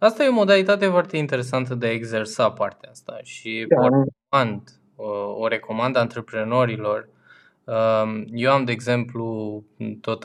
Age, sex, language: 20-39, male, Romanian